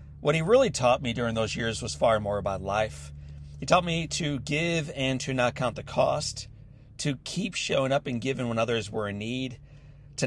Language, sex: English, male